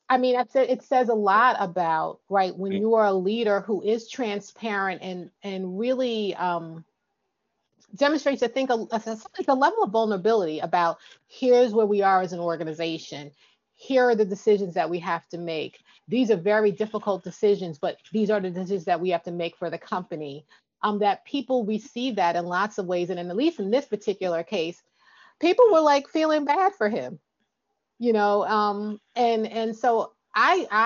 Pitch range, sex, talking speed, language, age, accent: 180-230 Hz, female, 185 wpm, English, 30-49, American